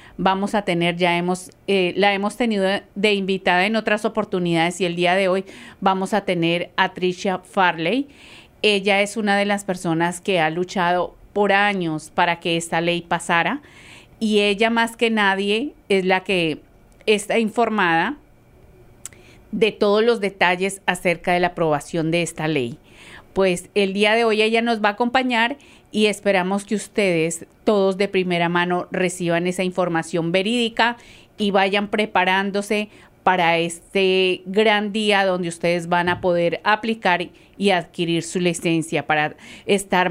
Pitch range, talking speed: 175-210 Hz, 155 wpm